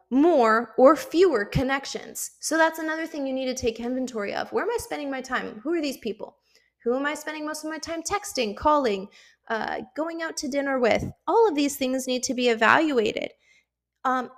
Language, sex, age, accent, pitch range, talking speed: English, female, 20-39, American, 225-275 Hz, 205 wpm